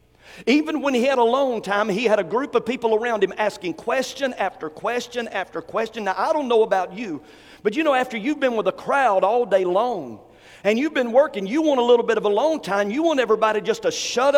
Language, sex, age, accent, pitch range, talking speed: English, male, 50-69, American, 230-295 Hz, 235 wpm